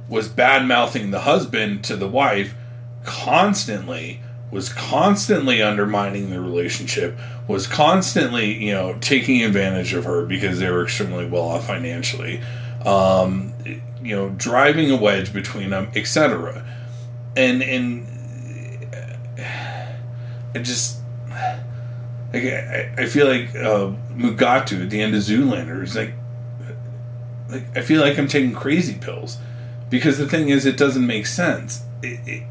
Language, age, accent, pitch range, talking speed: English, 40-59, American, 110-120 Hz, 135 wpm